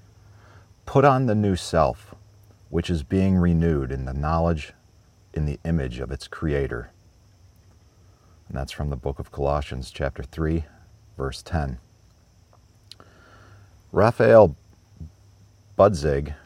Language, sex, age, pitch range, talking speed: English, male, 40-59, 80-100 Hz, 115 wpm